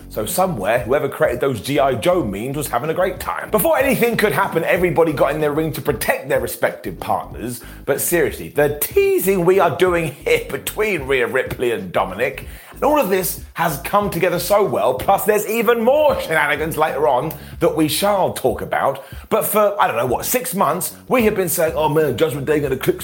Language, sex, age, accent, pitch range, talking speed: English, male, 30-49, British, 135-210 Hz, 210 wpm